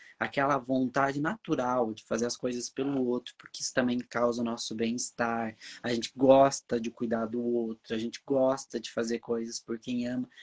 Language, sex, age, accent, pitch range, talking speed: Portuguese, male, 20-39, Brazilian, 120-170 Hz, 185 wpm